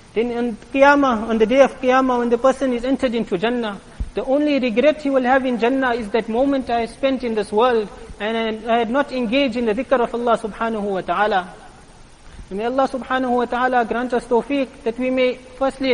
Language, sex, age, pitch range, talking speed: English, male, 30-49, 230-270 Hz, 210 wpm